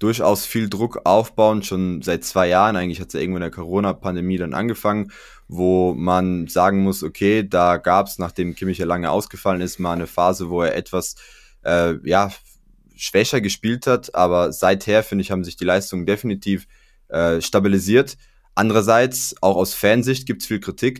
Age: 20-39